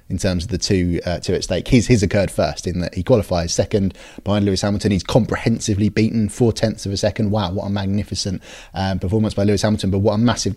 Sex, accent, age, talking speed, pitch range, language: male, British, 20-39, 240 wpm, 90-105 Hz, English